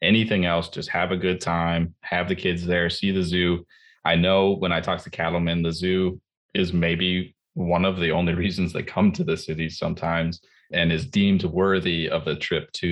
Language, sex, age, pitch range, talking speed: English, male, 20-39, 85-95 Hz, 205 wpm